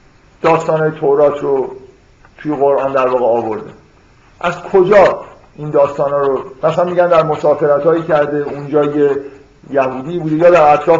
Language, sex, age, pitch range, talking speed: Persian, male, 50-69, 145-180 Hz, 125 wpm